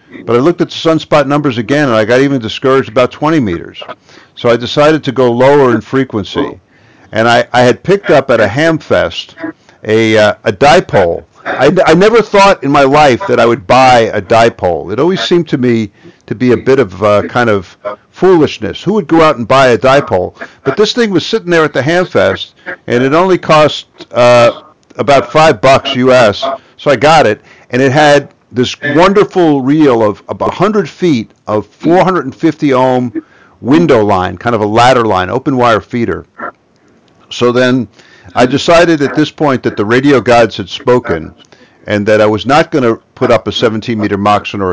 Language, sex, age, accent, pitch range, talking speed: English, male, 50-69, American, 115-150 Hz, 195 wpm